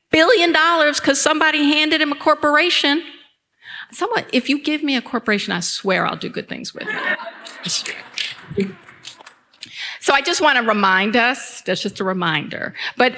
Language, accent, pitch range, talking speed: English, American, 200-280 Hz, 160 wpm